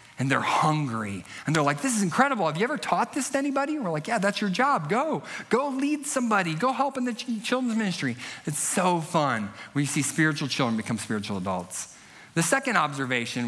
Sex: male